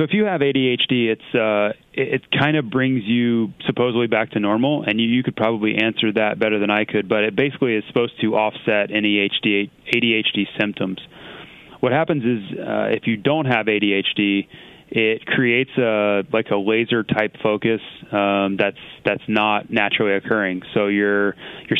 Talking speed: 175 wpm